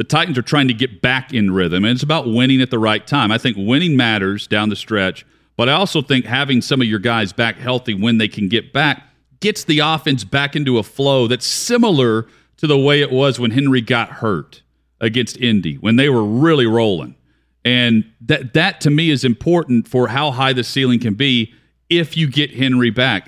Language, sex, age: English, male, 40-59